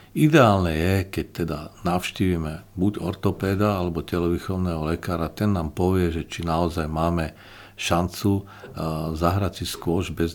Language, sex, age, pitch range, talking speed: Slovak, male, 50-69, 85-105 Hz, 130 wpm